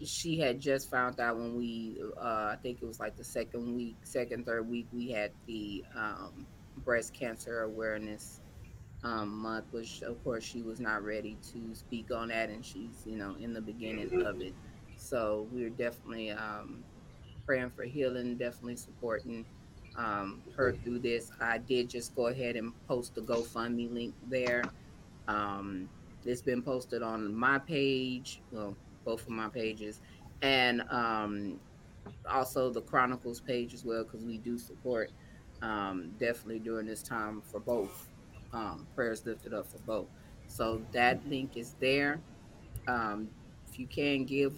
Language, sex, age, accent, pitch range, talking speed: English, female, 30-49, American, 110-125 Hz, 160 wpm